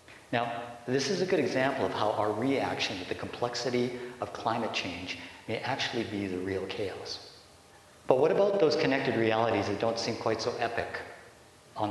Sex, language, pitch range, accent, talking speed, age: male, English, 100-120 Hz, American, 175 wpm, 50-69